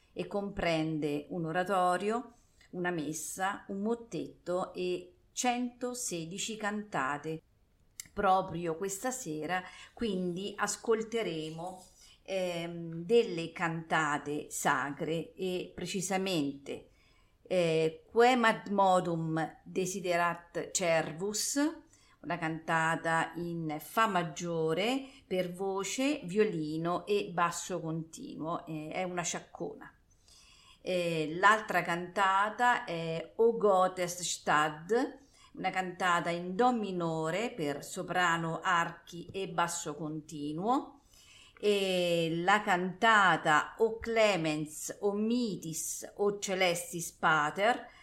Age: 40-59